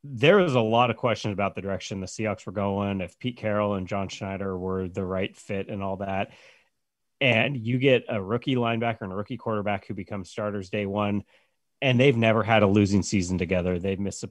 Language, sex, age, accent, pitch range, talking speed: English, male, 30-49, American, 95-115 Hz, 220 wpm